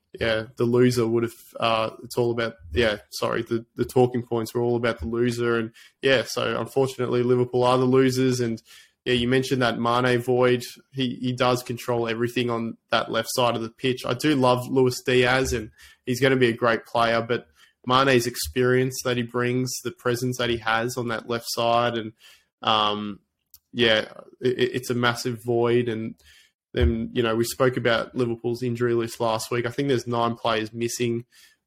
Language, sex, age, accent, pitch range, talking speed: English, male, 20-39, Australian, 115-125 Hz, 190 wpm